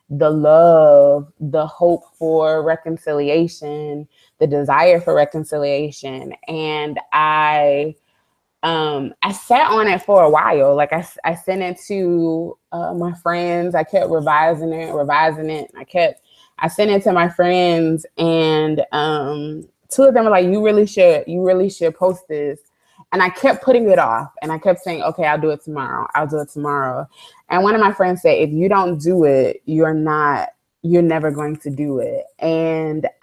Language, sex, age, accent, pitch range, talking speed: English, female, 20-39, American, 150-180 Hz, 175 wpm